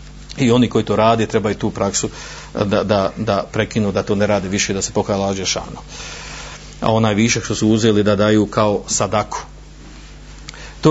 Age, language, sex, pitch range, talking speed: 40-59, Croatian, male, 115-155 Hz, 185 wpm